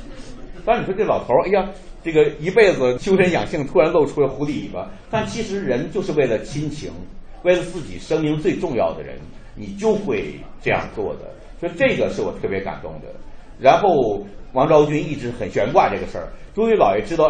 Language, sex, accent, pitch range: Chinese, male, native, 130-200 Hz